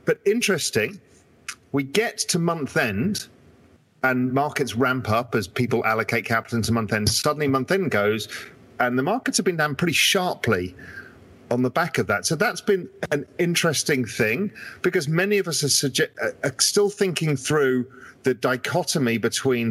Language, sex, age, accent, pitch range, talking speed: English, male, 40-59, British, 100-150 Hz, 165 wpm